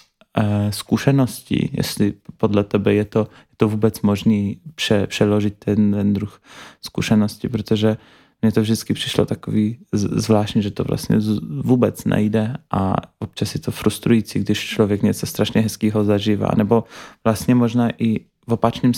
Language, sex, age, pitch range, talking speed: Czech, male, 20-39, 105-115 Hz, 150 wpm